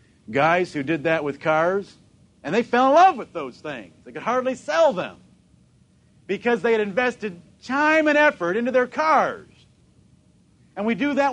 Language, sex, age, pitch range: English, male, 50-69, 175-245 Hz